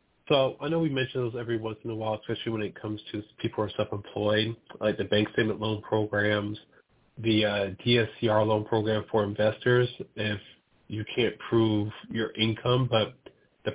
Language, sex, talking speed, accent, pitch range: English, male, 180 wpm, American, 105-125 Hz